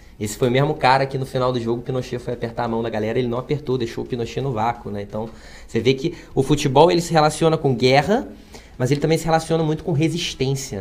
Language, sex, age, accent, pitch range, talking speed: Portuguese, male, 20-39, Brazilian, 125-170 Hz, 255 wpm